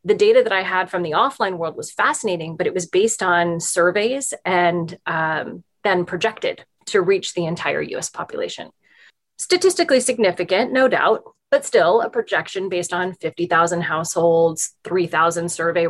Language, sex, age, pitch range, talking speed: English, female, 20-39, 170-230 Hz, 155 wpm